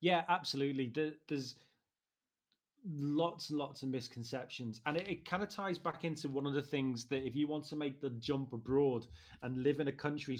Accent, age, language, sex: British, 30-49, English, male